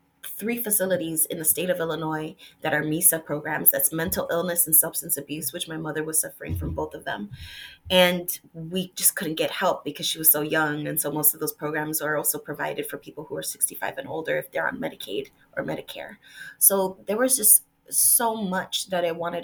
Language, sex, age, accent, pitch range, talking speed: English, female, 20-39, American, 155-190 Hz, 210 wpm